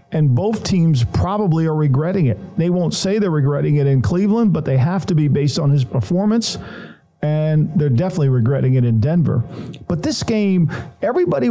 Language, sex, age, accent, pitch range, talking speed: English, male, 50-69, American, 140-175 Hz, 180 wpm